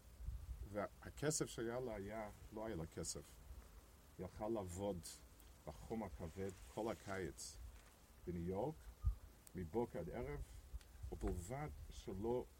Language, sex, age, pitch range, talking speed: English, male, 50-69, 85-105 Hz, 105 wpm